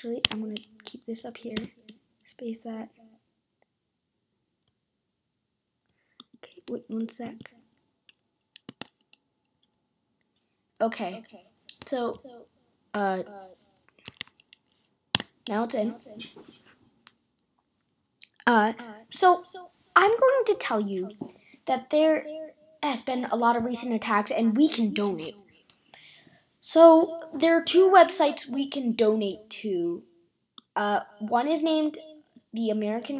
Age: 20-39